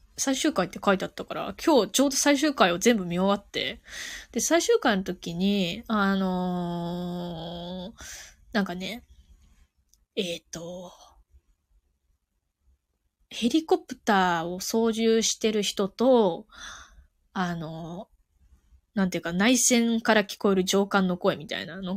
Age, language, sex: 20-39, Japanese, female